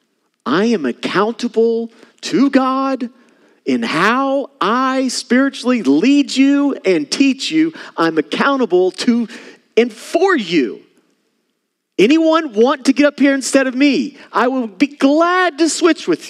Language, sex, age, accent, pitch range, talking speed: English, male, 40-59, American, 195-270 Hz, 135 wpm